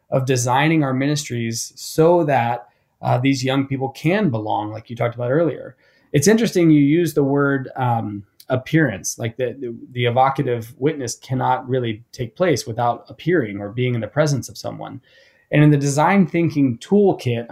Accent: American